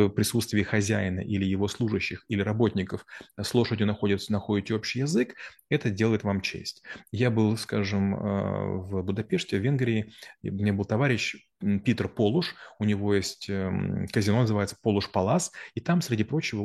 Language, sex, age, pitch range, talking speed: Russian, male, 30-49, 105-130 Hz, 135 wpm